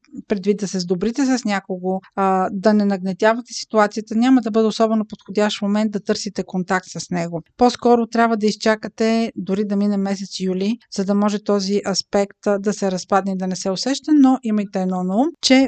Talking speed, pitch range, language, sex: 190 wpm, 195-240 Hz, Bulgarian, female